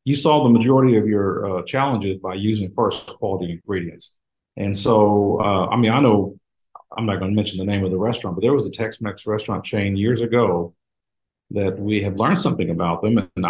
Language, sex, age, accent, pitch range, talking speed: English, male, 50-69, American, 95-115 Hz, 210 wpm